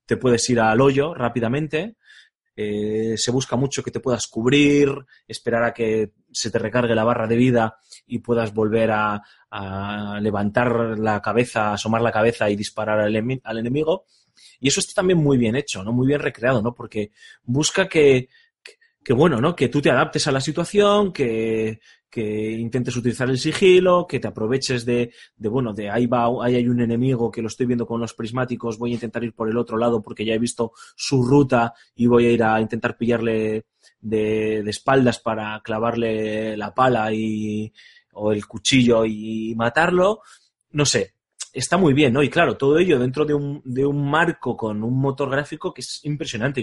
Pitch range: 110-135 Hz